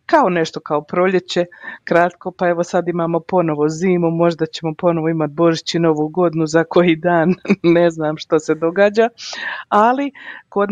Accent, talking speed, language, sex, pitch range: native, 155 wpm, Croatian, female, 165-200 Hz